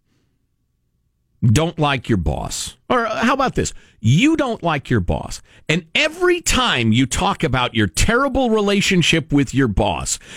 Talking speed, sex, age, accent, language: 145 wpm, male, 50-69, American, English